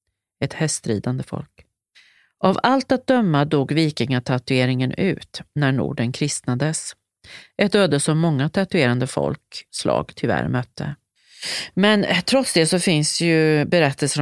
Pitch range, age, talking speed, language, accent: 135-175 Hz, 40-59, 120 wpm, Swedish, native